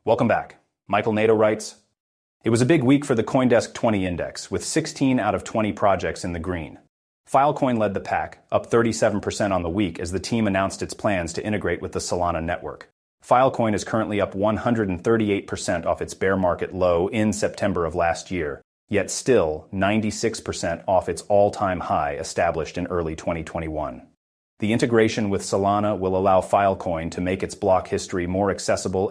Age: 30-49